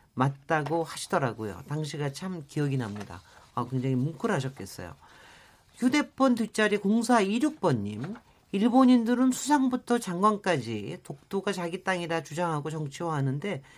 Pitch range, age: 145-215 Hz, 40-59